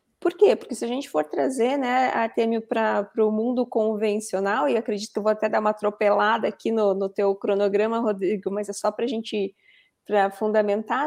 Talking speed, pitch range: 210 wpm, 205-255 Hz